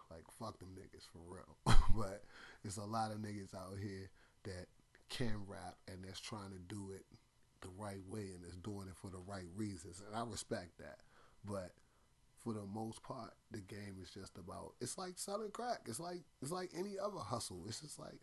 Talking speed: 205 wpm